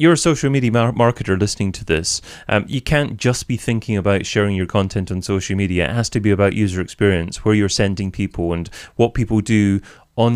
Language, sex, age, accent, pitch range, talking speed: English, male, 30-49, British, 100-120 Hz, 220 wpm